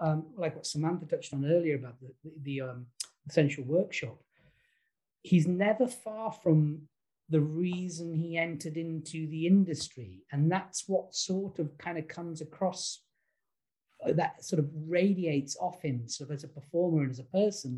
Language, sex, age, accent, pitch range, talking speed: English, male, 40-59, British, 145-170 Hz, 170 wpm